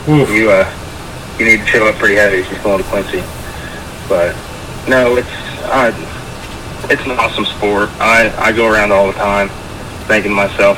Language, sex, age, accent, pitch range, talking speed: English, male, 20-39, American, 95-105 Hz, 180 wpm